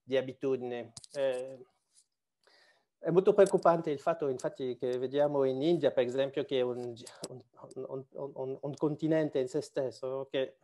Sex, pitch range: male, 130-150 Hz